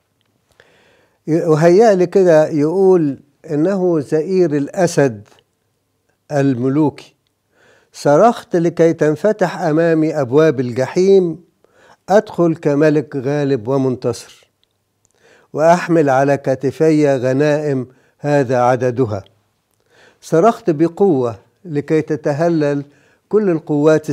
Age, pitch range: 60-79, 135-170 Hz